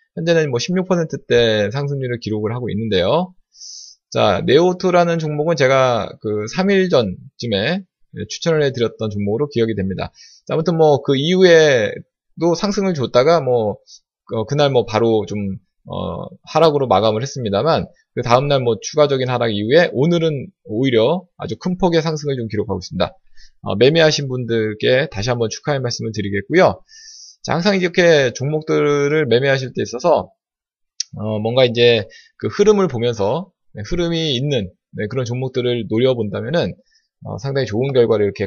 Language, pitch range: Korean, 115-170 Hz